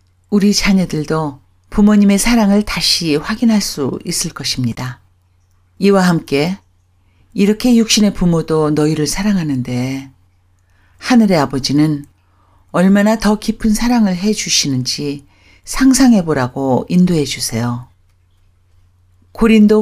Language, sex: Korean, female